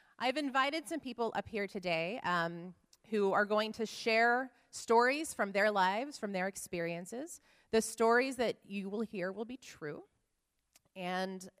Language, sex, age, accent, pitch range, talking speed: English, female, 30-49, American, 175-220 Hz, 155 wpm